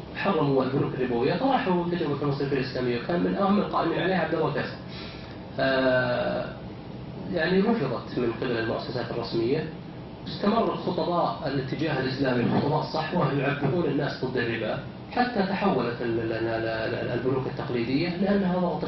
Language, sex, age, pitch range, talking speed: Arabic, male, 30-49, 115-160 Hz, 115 wpm